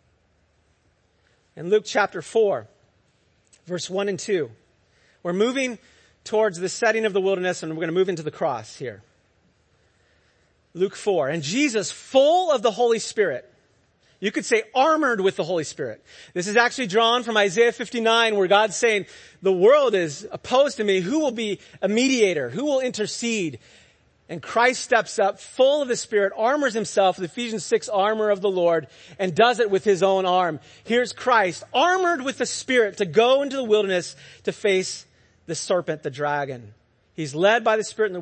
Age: 40-59